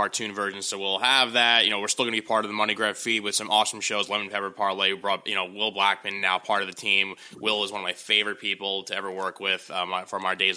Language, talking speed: English, 295 wpm